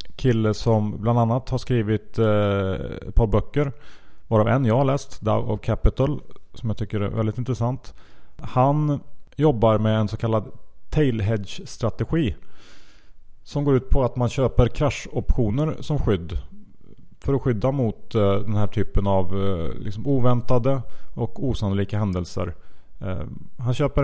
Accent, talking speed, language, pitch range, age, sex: Norwegian, 140 wpm, Swedish, 100-120 Hz, 30-49, male